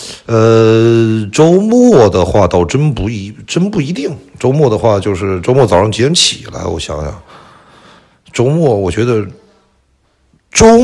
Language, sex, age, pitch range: Chinese, male, 60-79, 90-130 Hz